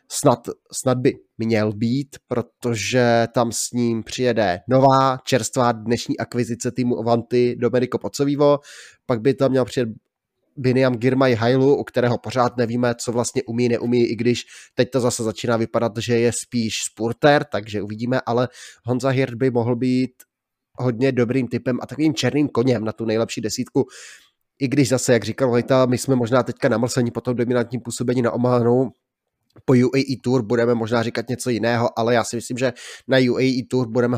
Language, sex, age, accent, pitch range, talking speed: Czech, male, 20-39, native, 115-130 Hz, 170 wpm